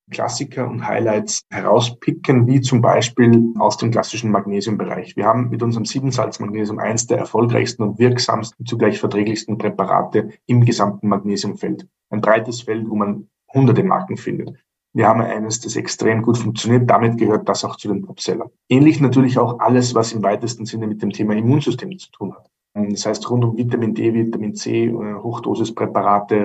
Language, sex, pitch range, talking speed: German, male, 110-120 Hz, 170 wpm